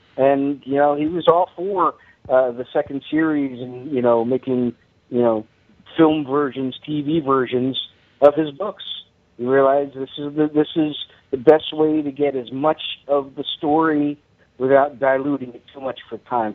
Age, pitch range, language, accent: 50-69, 125-155 Hz, English, American